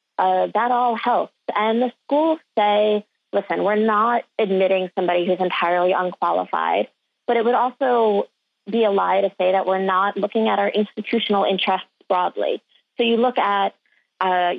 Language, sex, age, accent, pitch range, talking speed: English, female, 30-49, American, 185-225 Hz, 165 wpm